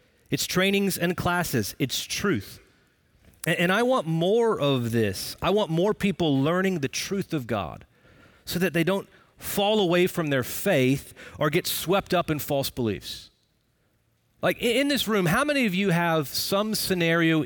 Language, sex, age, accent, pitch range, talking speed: English, male, 40-59, American, 145-205 Hz, 170 wpm